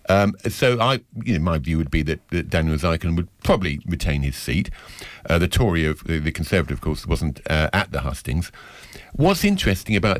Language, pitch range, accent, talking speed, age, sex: English, 85-125 Hz, British, 200 wpm, 50-69, male